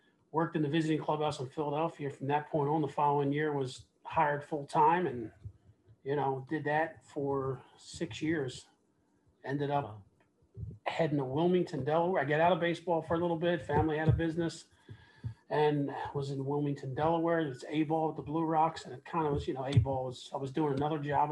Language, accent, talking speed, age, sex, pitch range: English, American, 200 wpm, 40-59, male, 135-155 Hz